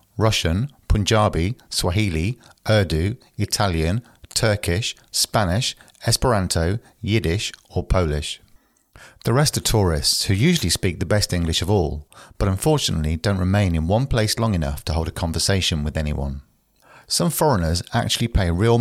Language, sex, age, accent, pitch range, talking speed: English, male, 40-59, British, 85-110 Hz, 135 wpm